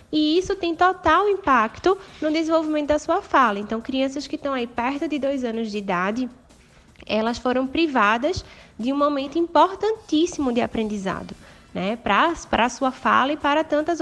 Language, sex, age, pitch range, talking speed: Portuguese, female, 10-29, 235-305 Hz, 165 wpm